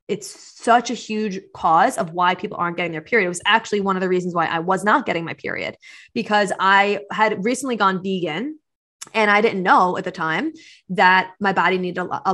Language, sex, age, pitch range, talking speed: English, female, 20-39, 185-220 Hz, 215 wpm